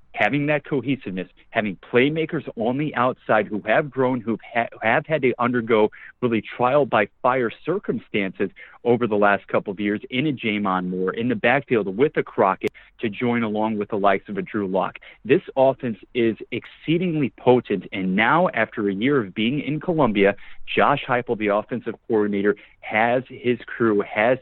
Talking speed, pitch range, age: 165 wpm, 105-135 Hz, 30-49